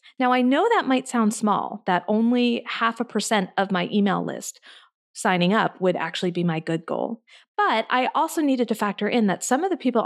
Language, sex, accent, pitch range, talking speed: English, female, American, 185-265 Hz, 215 wpm